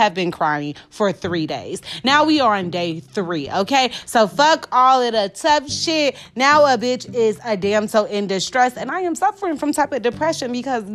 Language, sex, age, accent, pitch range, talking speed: English, female, 30-49, American, 220-315 Hz, 210 wpm